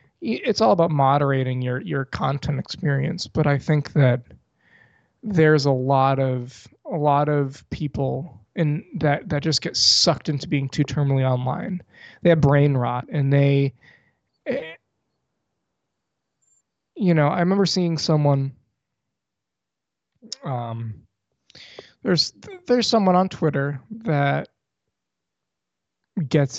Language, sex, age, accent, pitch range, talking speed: English, male, 20-39, American, 125-160 Hz, 115 wpm